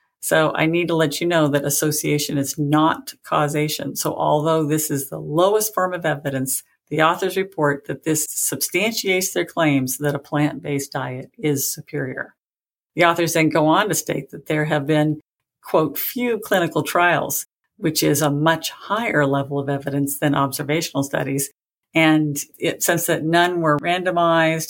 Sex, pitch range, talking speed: female, 145-175 Hz, 165 wpm